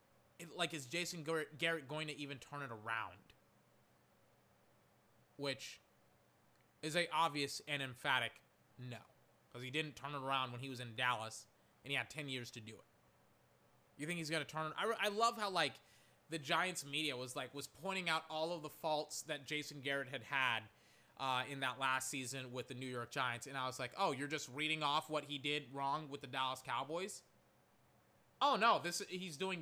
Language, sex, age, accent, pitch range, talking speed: English, male, 20-39, American, 130-180 Hz, 195 wpm